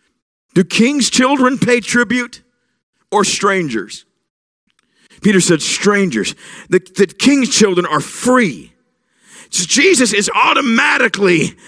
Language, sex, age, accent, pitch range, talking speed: English, male, 50-69, American, 185-255 Hz, 105 wpm